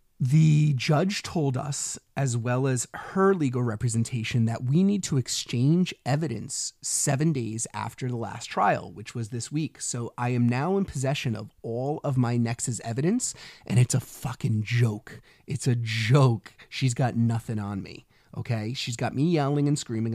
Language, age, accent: English, 30-49, American